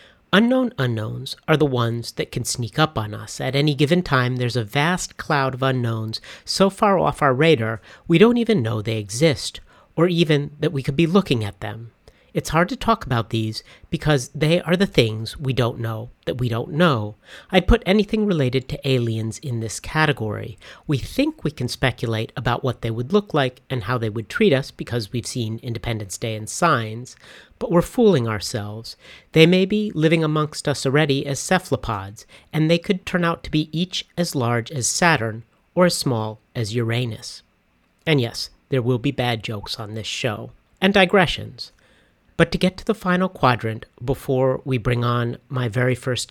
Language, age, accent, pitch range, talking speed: English, 40-59, American, 115-165 Hz, 190 wpm